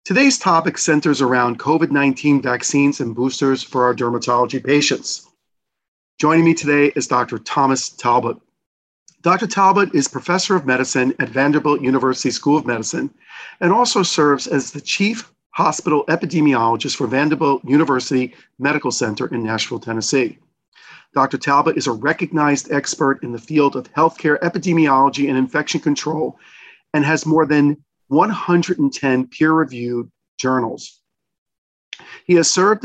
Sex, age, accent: male, 40-59, American